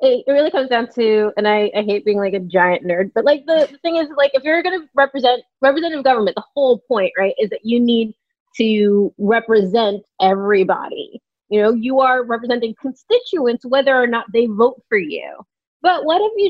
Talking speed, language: 205 wpm, English